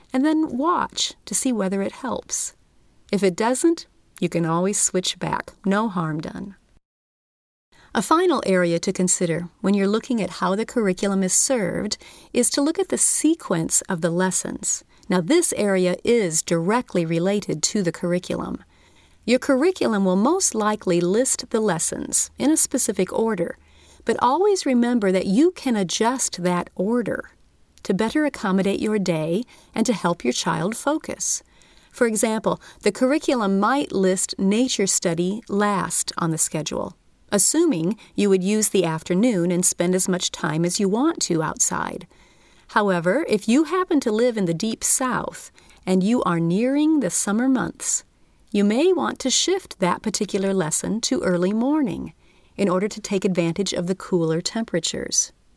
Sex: female